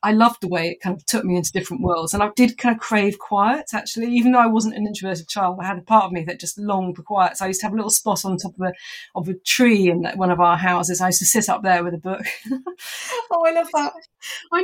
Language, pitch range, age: English, 190-260 Hz, 30-49